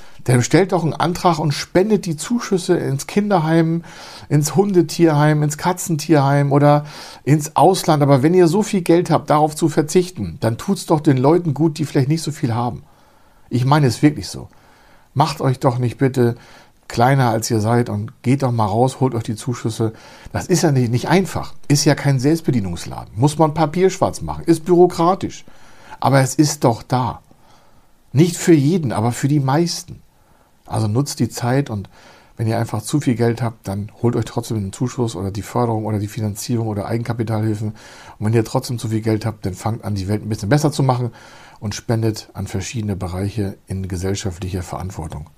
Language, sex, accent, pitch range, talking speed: German, male, German, 110-150 Hz, 190 wpm